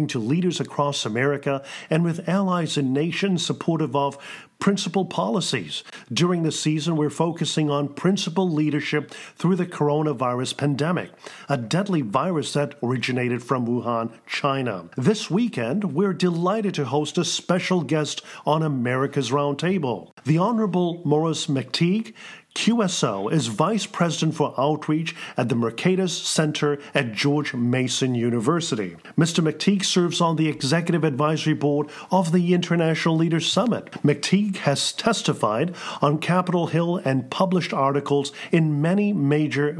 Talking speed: 135 wpm